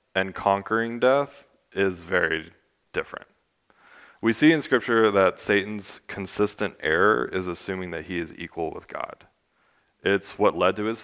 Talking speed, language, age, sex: 145 wpm, English, 20-39, male